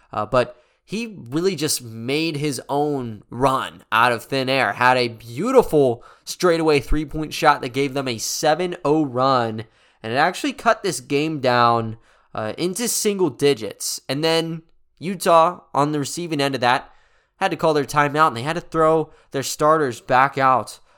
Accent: American